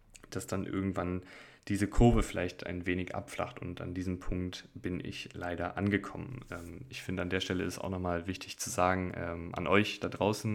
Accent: German